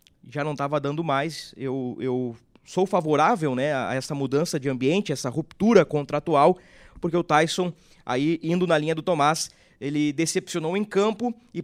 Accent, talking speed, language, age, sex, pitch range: Brazilian, 165 wpm, Portuguese, 20-39, male, 145-195 Hz